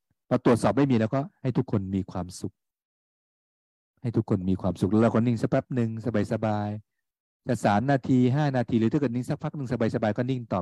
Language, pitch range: Thai, 95-125 Hz